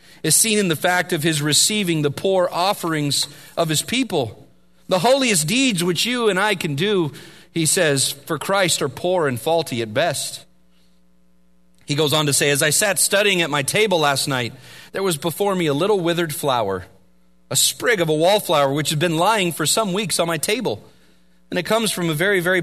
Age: 40-59